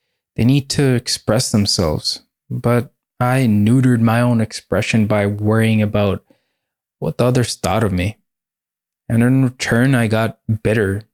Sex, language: male, English